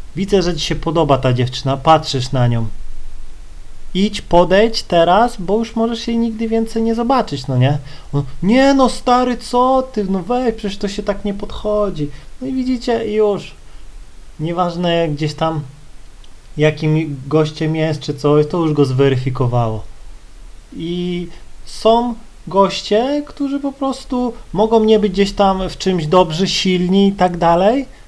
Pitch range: 145-205 Hz